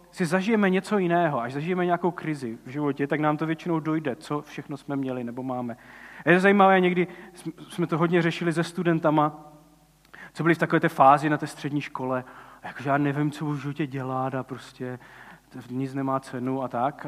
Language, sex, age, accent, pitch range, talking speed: Czech, male, 40-59, native, 135-180 Hz, 195 wpm